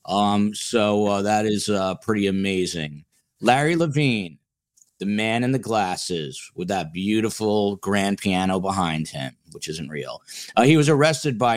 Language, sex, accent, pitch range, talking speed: English, male, American, 100-125 Hz, 155 wpm